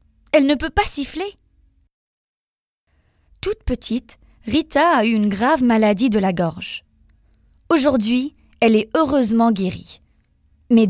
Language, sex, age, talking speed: French, female, 20-39, 120 wpm